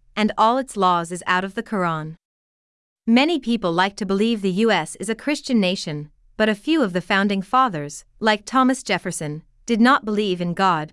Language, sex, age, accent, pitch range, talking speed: English, female, 30-49, American, 180-240 Hz, 190 wpm